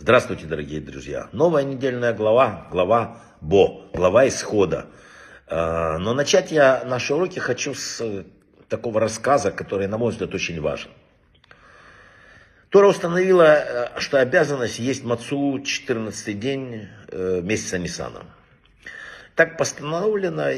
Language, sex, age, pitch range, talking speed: Russian, male, 60-79, 100-155 Hz, 110 wpm